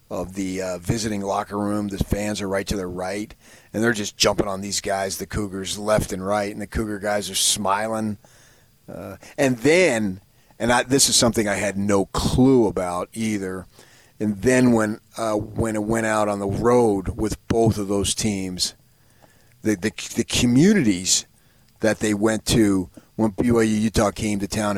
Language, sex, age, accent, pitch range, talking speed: English, male, 40-59, American, 100-120 Hz, 180 wpm